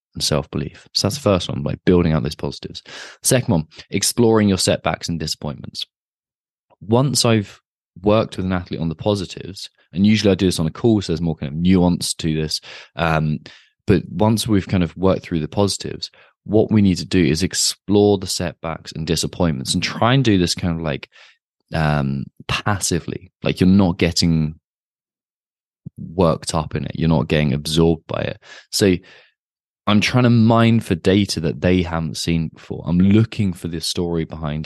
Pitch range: 80-100 Hz